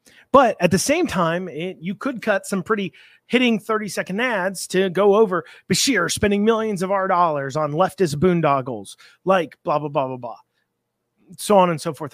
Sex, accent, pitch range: male, American, 160-205 Hz